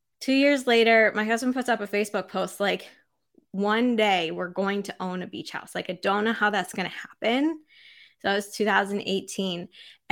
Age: 20-39